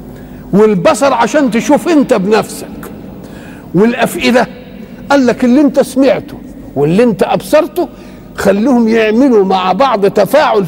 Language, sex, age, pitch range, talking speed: Arabic, male, 50-69, 205-270 Hz, 105 wpm